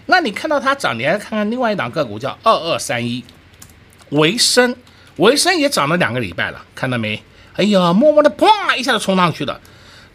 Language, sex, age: Chinese, male, 50-69